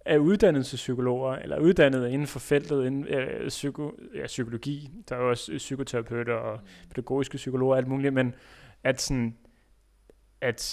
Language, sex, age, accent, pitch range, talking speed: Danish, male, 30-49, native, 120-140 Hz, 150 wpm